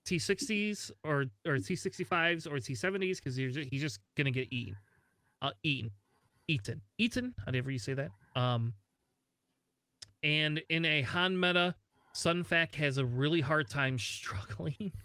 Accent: American